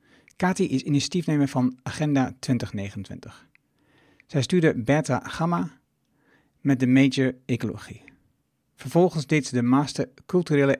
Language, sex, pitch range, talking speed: Dutch, male, 125-145 Hz, 110 wpm